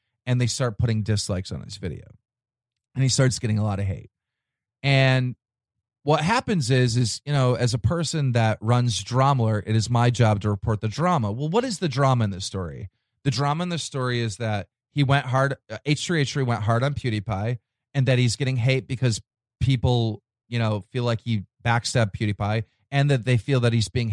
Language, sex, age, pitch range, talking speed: English, male, 30-49, 110-150 Hz, 200 wpm